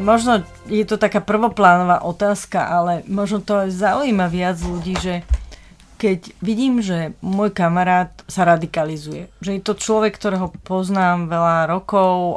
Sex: female